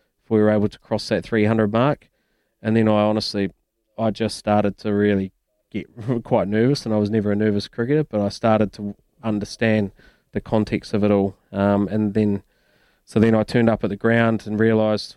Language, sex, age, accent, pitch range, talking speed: English, male, 20-39, Australian, 105-115 Hz, 200 wpm